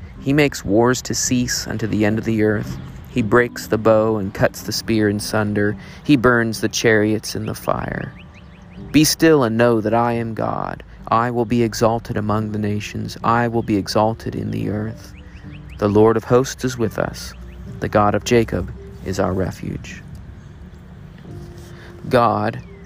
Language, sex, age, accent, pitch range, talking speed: English, male, 40-59, American, 100-120 Hz, 170 wpm